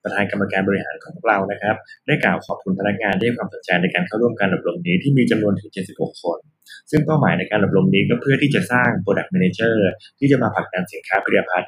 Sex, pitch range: male, 95-130 Hz